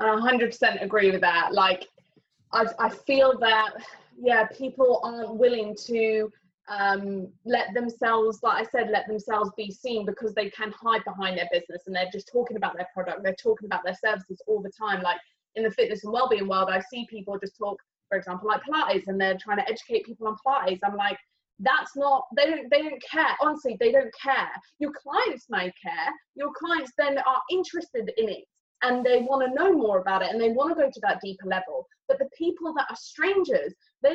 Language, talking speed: English, 210 wpm